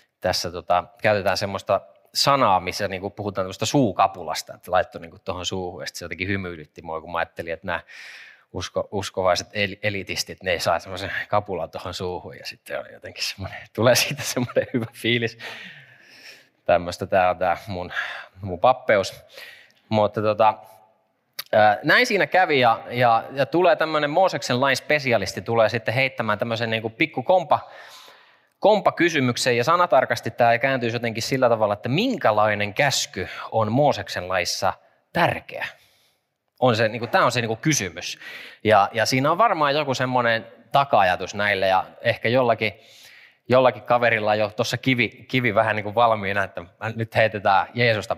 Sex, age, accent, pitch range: male, 20-39, native, 100-130 Hz